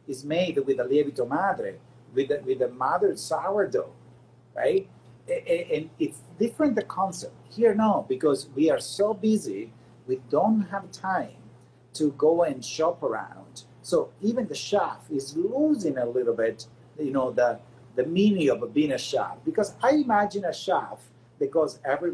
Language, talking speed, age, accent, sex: English, 160 wpm, 50-69, Italian, male